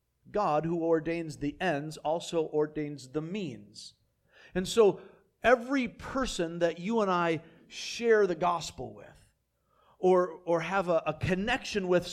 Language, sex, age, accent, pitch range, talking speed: English, male, 50-69, American, 145-200 Hz, 140 wpm